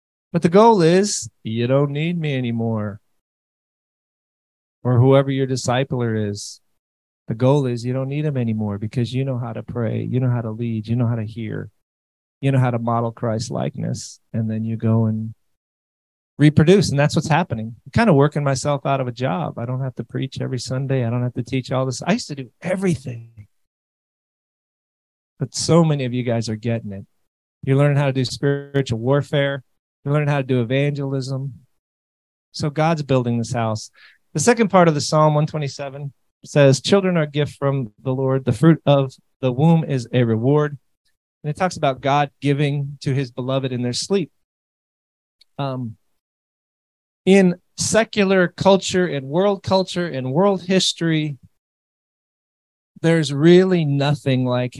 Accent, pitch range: American, 115-150 Hz